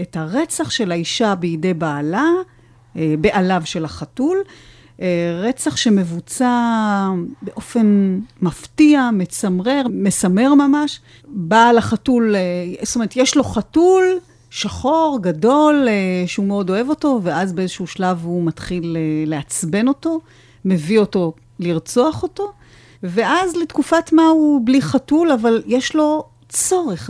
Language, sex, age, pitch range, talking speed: Hebrew, female, 40-59, 180-260 Hz, 110 wpm